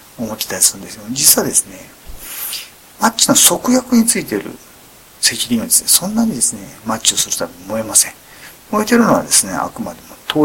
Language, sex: Japanese, male